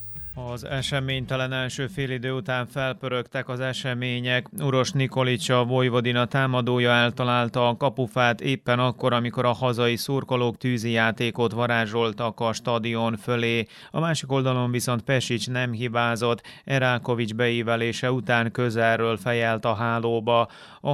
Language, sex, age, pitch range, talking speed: Hungarian, male, 30-49, 115-125 Hz, 125 wpm